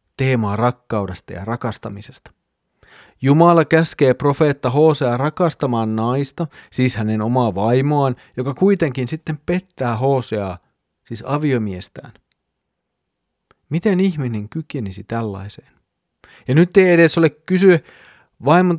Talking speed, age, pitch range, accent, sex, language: 100 wpm, 30-49, 110-140 Hz, native, male, Finnish